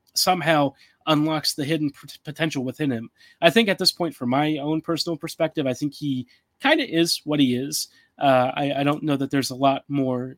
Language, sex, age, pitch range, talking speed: English, male, 30-49, 135-165 Hz, 210 wpm